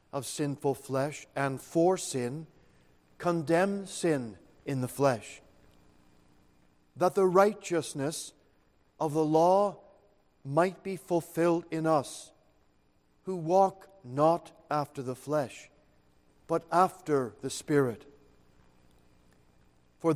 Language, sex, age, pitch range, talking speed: English, male, 50-69, 125-175 Hz, 100 wpm